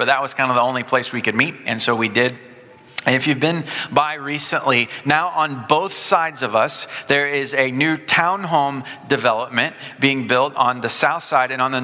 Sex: male